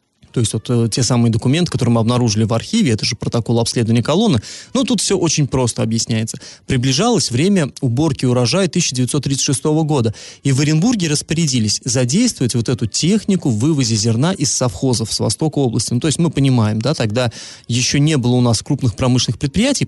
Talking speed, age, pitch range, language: 170 wpm, 20-39, 120-170 Hz, Russian